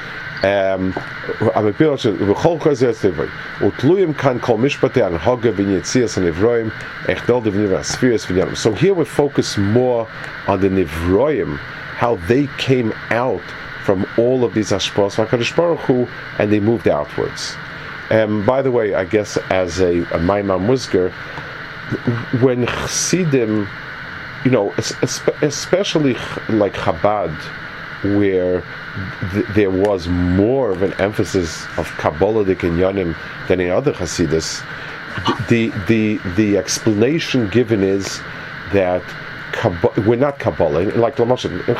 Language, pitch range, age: English, 95-130 Hz, 40-59